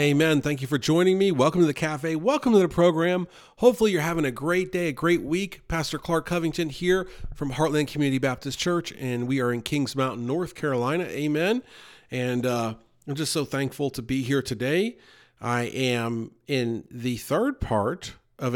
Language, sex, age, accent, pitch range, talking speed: English, male, 40-59, American, 130-175 Hz, 190 wpm